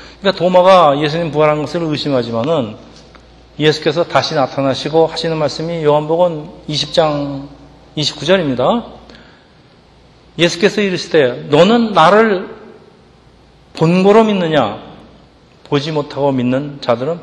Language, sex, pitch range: Korean, male, 140-180 Hz